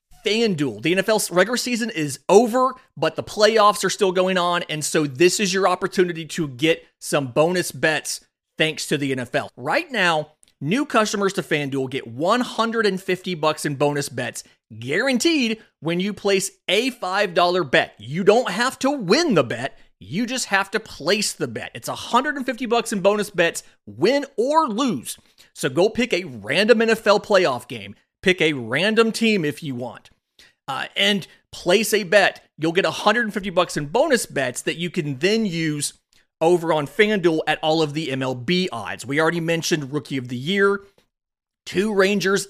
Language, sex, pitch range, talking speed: English, male, 150-205 Hz, 170 wpm